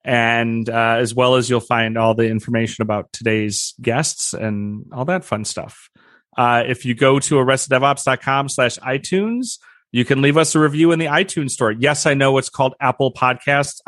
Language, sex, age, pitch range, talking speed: English, male, 30-49, 120-160 Hz, 185 wpm